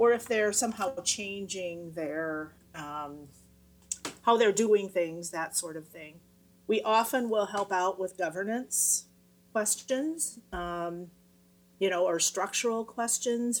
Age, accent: 40-59, American